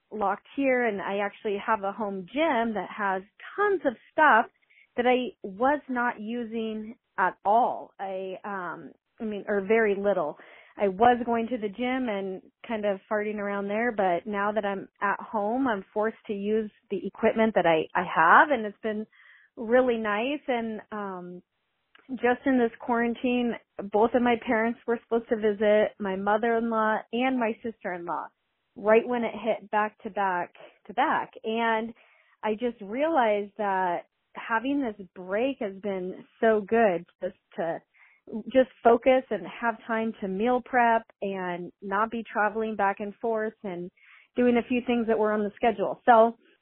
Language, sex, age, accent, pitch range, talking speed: English, female, 30-49, American, 205-240 Hz, 165 wpm